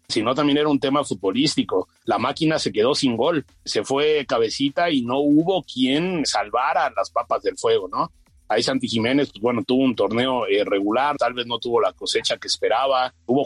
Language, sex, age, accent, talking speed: Spanish, male, 30-49, Mexican, 190 wpm